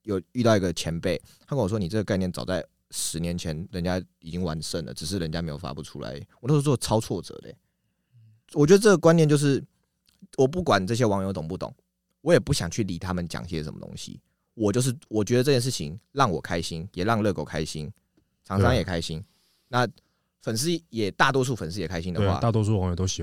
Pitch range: 90-145 Hz